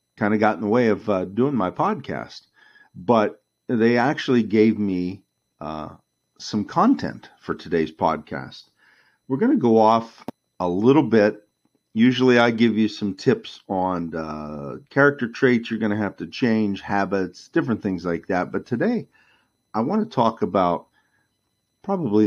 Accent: American